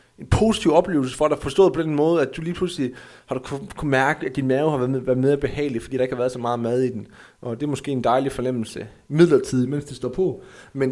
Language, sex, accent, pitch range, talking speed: Danish, male, native, 125-155 Hz, 265 wpm